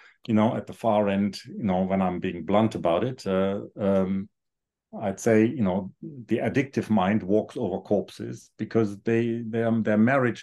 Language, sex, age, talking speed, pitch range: English, male, 50-69, 185 wpm, 105-125 Hz